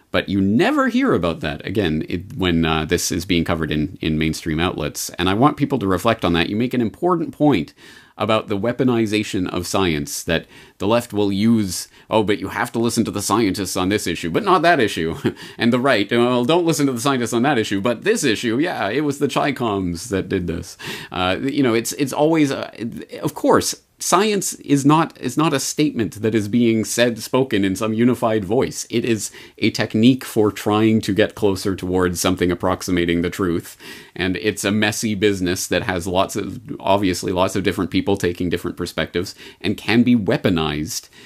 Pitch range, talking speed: 85-115 Hz, 205 wpm